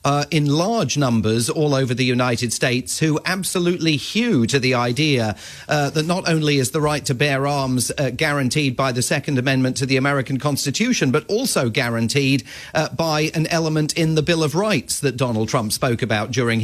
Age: 40-59